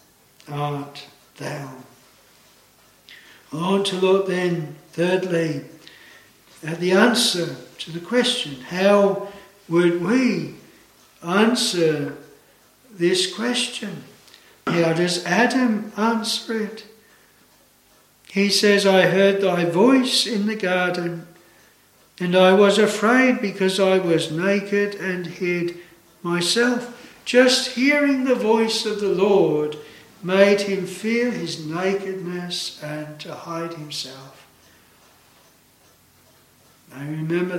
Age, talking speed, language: 60-79, 100 wpm, English